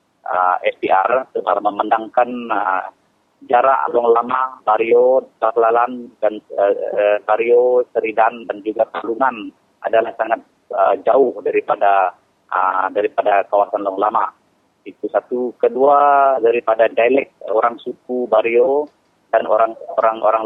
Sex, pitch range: male, 105-135 Hz